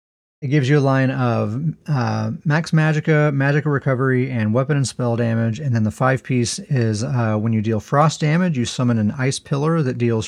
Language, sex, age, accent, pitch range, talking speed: English, male, 30-49, American, 110-140 Hz, 205 wpm